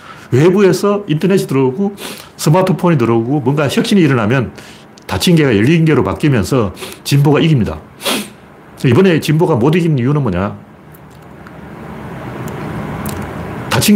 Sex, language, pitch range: male, Korean, 125-185 Hz